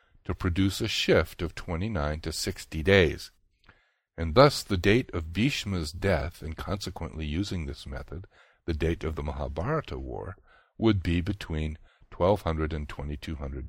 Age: 60-79